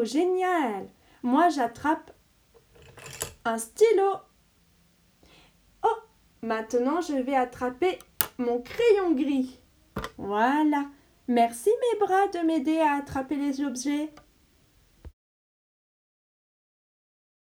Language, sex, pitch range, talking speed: French, female, 235-345 Hz, 80 wpm